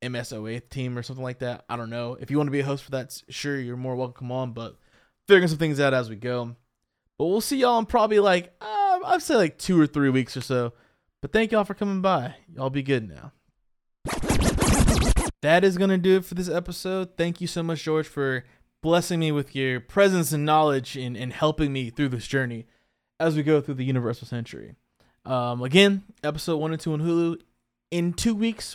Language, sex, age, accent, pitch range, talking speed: English, male, 20-39, American, 130-170 Hz, 215 wpm